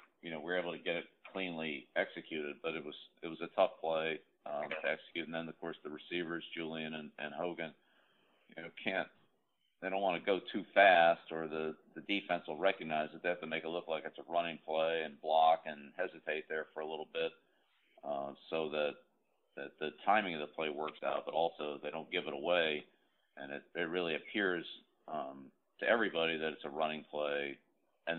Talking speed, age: 215 wpm, 50-69